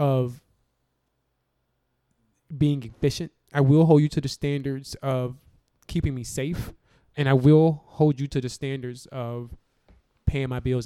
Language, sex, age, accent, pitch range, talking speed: English, male, 20-39, American, 125-145 Hz, 145 wpm